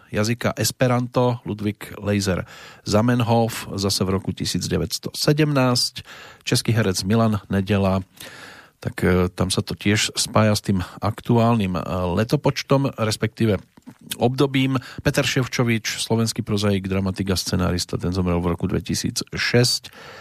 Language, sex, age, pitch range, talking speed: Slovak, male, 40-59, 95-115 Hz, 105 wpm